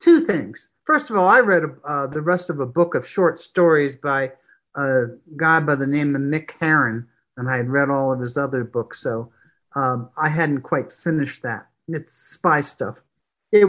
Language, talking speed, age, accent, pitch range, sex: English, 195 wpm, 60-79, American, 145-200 Hz, male